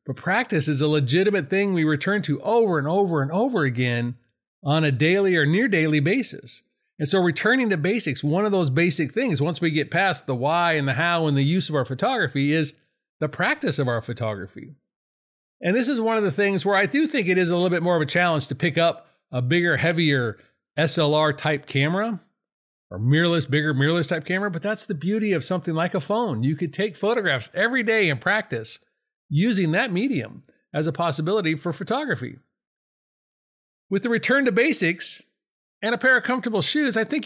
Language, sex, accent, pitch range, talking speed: English, male, American, 150-210 Hz, 205 wpm